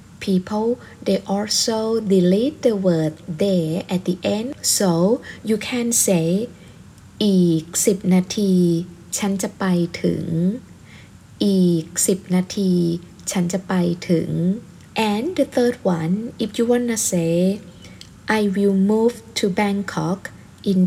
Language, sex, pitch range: Thai, female, 180-210 Hz